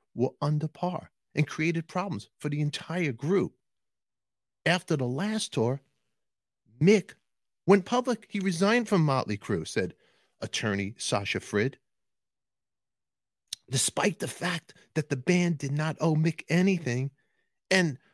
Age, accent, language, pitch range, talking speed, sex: 40-59, American, English, 110-165 Hz, 125 wpm, male